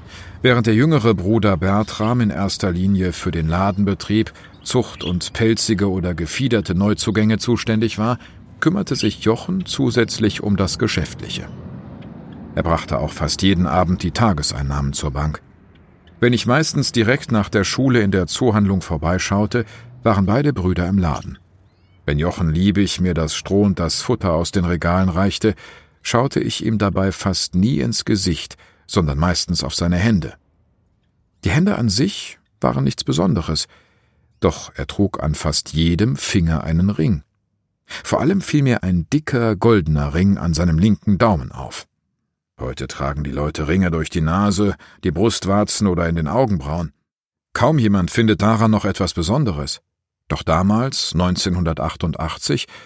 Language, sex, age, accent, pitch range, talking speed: German, male, 50-69, German, 85-110 Hz, 150 wpm